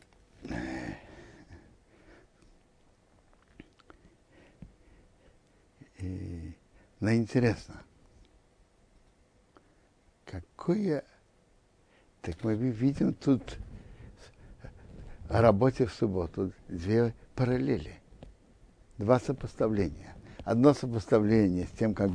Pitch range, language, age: 95-130 Hz, Russian, 60-79